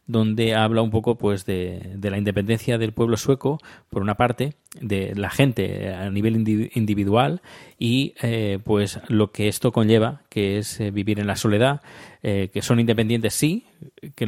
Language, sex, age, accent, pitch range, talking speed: Spanish, male, 20-39, Spanish, 105-125 Hz, 170 wpm